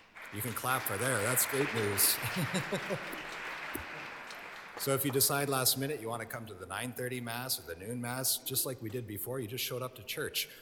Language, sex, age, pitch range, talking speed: English, male, 40-59, 90-110 Hz, 210 wpm